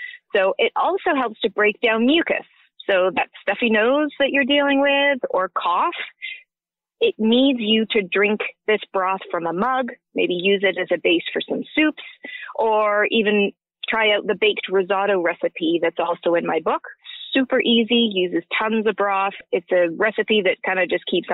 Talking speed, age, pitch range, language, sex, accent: 180 wpm, 30-49, 200-280 Hz, English, female, American